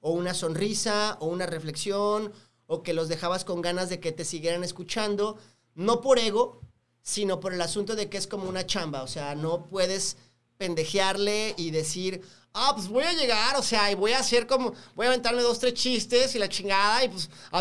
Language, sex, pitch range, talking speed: Spanish, male, 165-220 Hz, 210 wpm